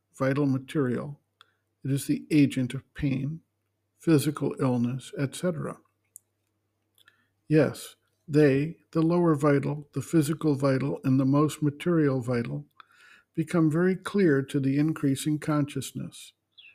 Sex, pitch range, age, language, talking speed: male, 130-155 Hz, 60-79, English, 110 wpm